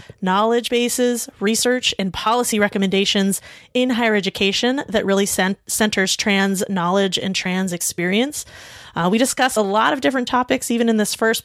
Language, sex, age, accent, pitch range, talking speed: English, female, 20-39, American, 190-230 Hz, 150 wpm